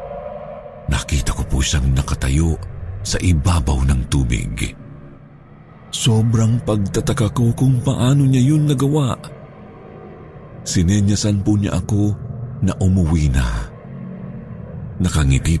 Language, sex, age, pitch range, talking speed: Filipino, male, 50-69, 75-115 Hz, 95 wpm